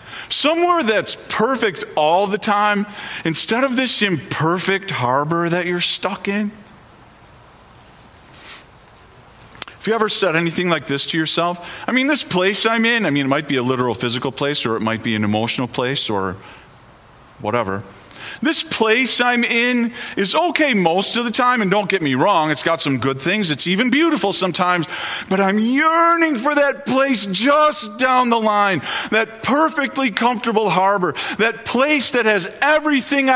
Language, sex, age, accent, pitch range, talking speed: English, male, 40-59, American, 175-260 Hz, 165 wpm